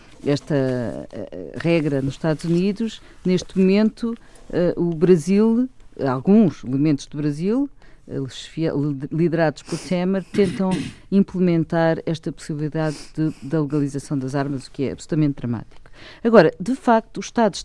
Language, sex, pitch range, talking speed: Portuguese, female, 150-190 Hz, 115 wpm